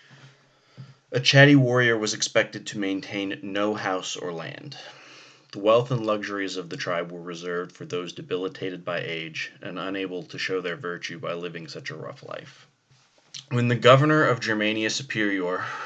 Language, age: English, 30-49